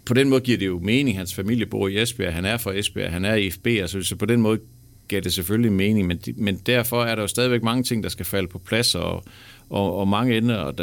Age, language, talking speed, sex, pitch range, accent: 50-69, Danish, 245 wpm, male, 95-120 Hz, native